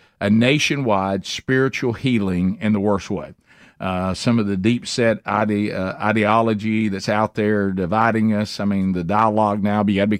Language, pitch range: English, 105-130 Hz